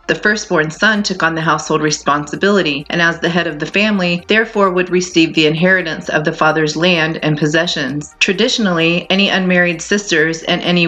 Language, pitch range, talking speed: English, 160-190 Hz, 175 wpm